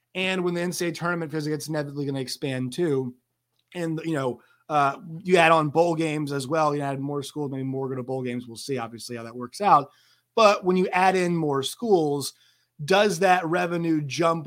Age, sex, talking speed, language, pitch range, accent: 30-49, male, 210 wpm, English, 135-165 Hz, American